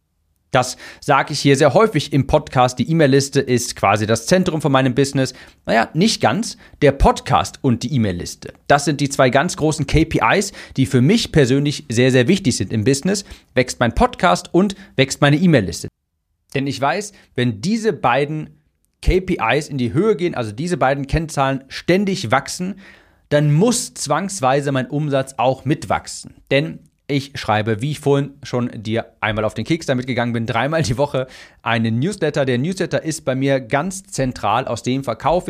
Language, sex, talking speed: German, male, 175 wpm